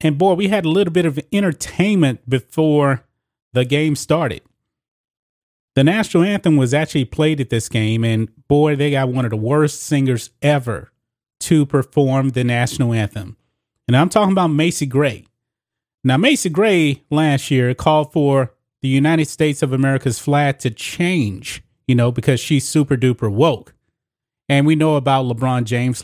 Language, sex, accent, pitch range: English, male, American, 120-155 Hz